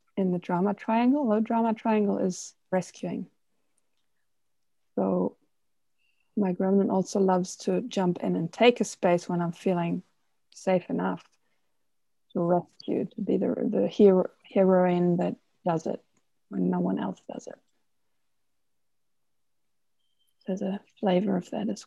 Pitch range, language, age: 175-205 Hz, English, 20-39